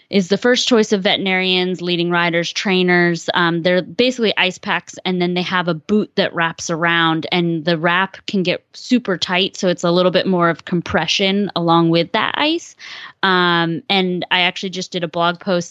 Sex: female